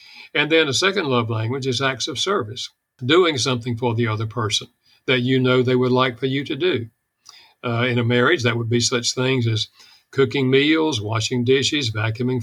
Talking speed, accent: 200 wpm, American